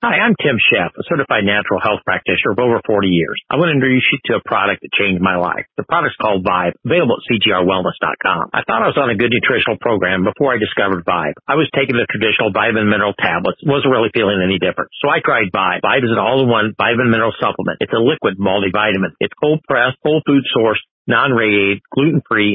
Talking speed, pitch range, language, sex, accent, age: 215 wpm, 100-140 Hz, English, male, American, 50-69